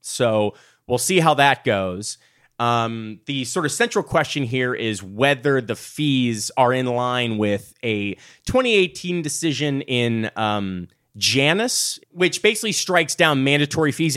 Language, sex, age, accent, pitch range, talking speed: English, male, 30-49, American, 105-140 Hz, 140 wpm